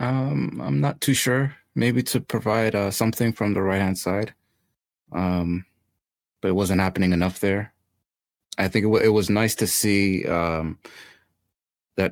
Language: English